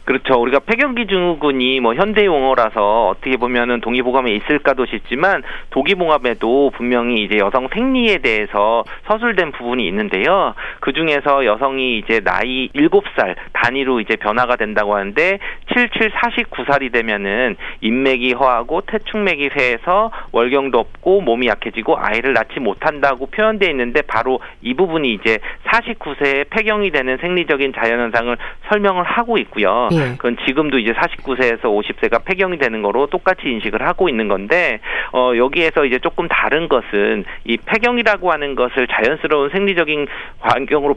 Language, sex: Korean, male